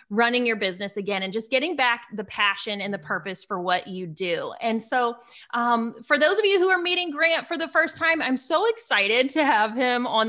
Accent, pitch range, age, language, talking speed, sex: American, 205-265 Hz, 20-39, English, 230 wpm, female